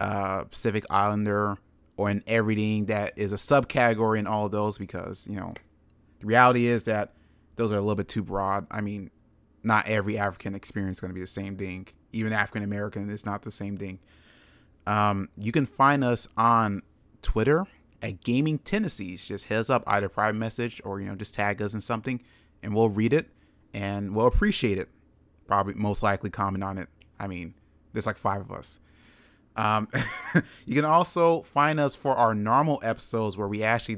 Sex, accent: male, American